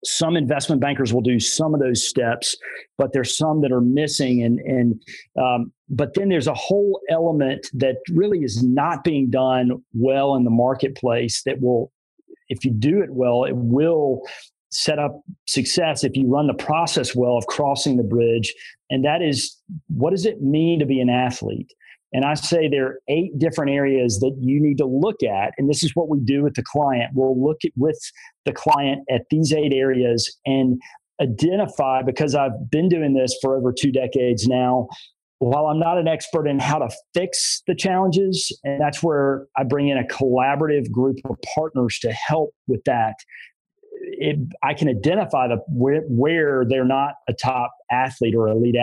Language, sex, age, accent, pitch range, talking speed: English, male, 40-59, American, 125-155 Hz, 185 wpm